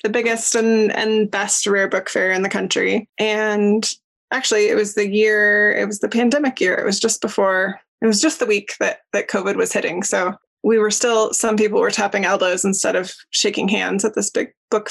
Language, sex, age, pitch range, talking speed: English, female, 20-39, 200-240 Hz, 215 wpm